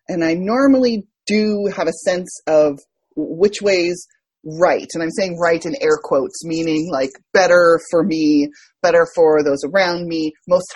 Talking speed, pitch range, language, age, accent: 160 wpm, 170-280 Hz, English, 30-49, American